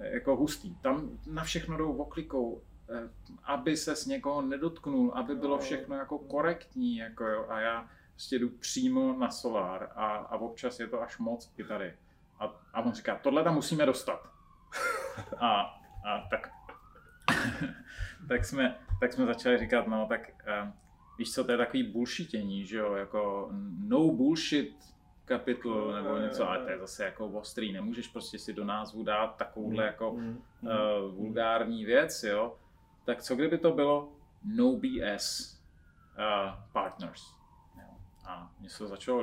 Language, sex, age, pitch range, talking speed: Czech, male, 30-49, 105-155 Hz, 155 wpm